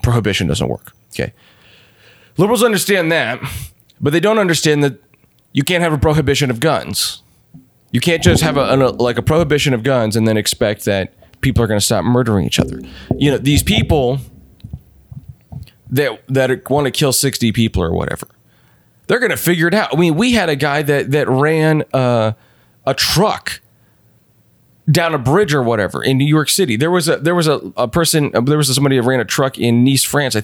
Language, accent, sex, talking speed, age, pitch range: English, American, male, 200 wpm, 30-49, 115-150 Hz